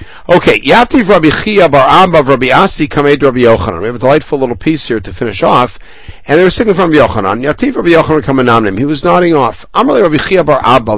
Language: English